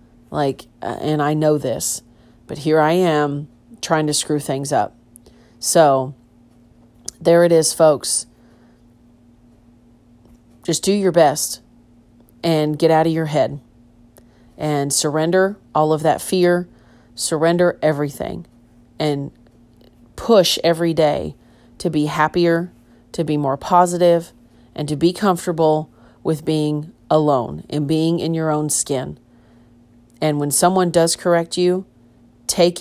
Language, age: English, 40-59